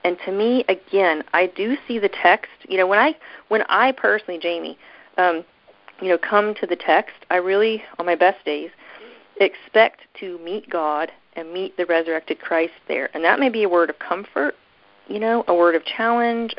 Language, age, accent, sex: English, 40-59, American, female